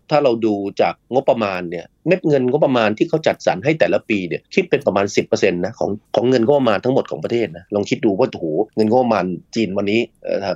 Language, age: Thai, 30-49